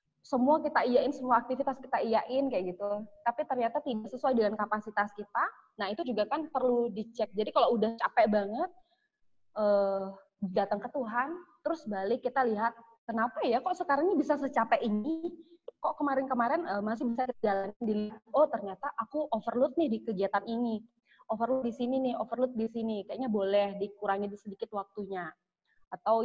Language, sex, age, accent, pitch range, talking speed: Indonesian, female, 20-39, native, 215-280 Hz, 165 wpm